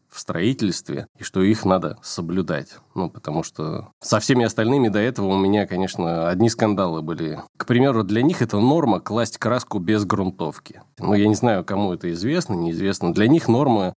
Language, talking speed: Russian, 180 wpm